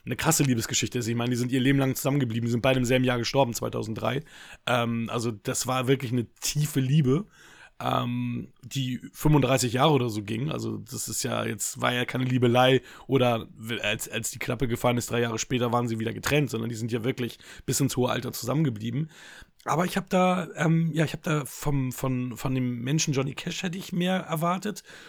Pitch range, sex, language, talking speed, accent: 125-145 Hz, male, German, 210 wpm, German